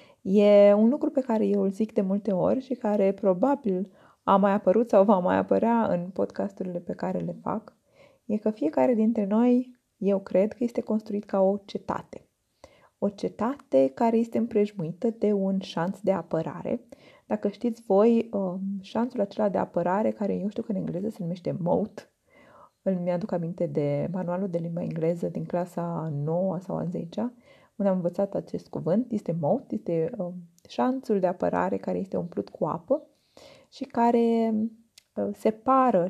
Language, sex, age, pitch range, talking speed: Romanian, female, 20-39, 180-230 Hz, 165 wpm